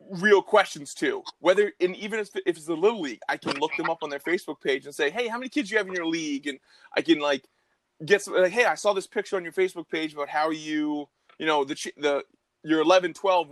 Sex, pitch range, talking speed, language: male, 145-190 Hz, 260 wpm, English